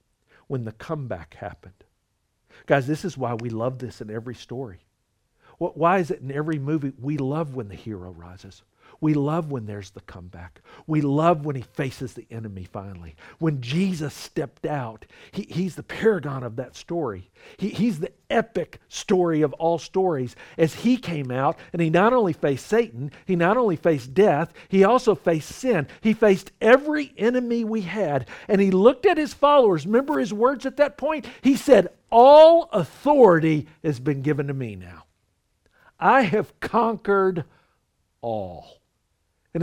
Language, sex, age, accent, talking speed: English, male, 50-69, American, 165 wpm